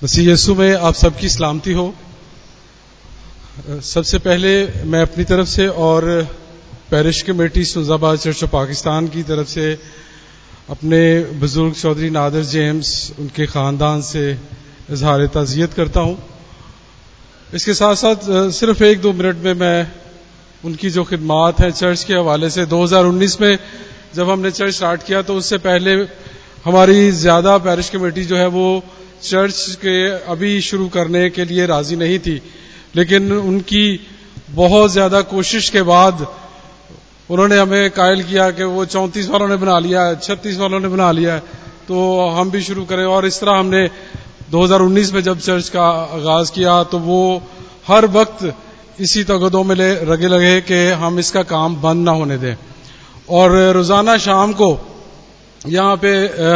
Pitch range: 165-190 Hz